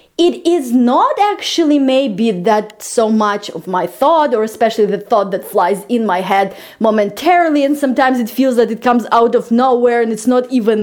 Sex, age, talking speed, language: female, 30-49, 200 wpm, English